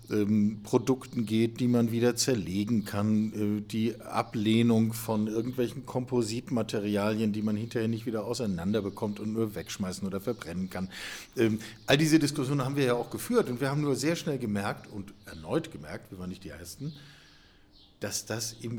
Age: 50-69